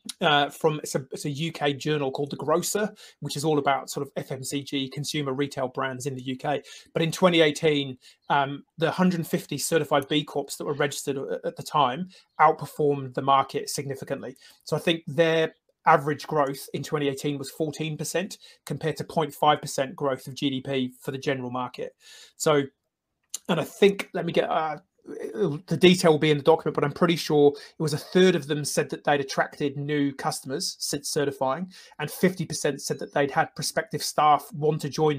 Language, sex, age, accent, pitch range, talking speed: English, male, 30-49, British, 145-165 Hz, 185 wpm